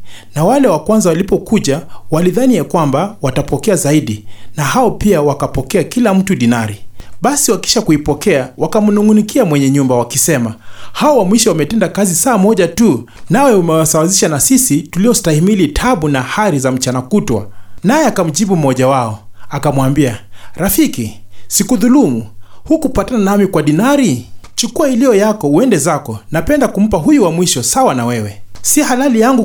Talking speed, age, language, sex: 150 wpm, 30-49, English, male